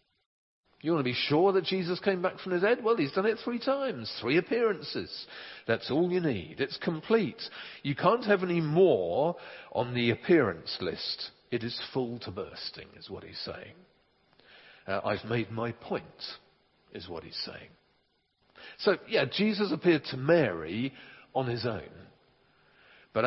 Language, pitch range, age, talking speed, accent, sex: English, 115-180 Hz, 50-69, 160 wpm, British, male